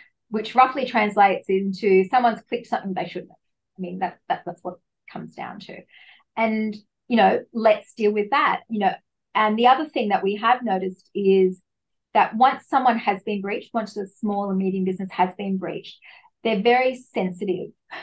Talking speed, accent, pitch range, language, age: 185 wpm, Australian, 190-225 Hz, English, 30-49